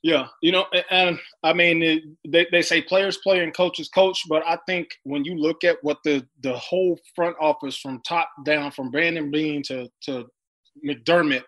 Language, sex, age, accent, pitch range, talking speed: English, male, 20-39, American, 145-175 Hz, 200 wpm